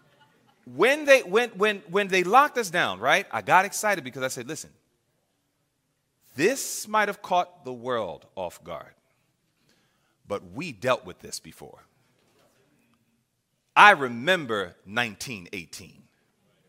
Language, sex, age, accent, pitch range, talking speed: English, male, 40-59, American, 130-195 Hz, 120 wpm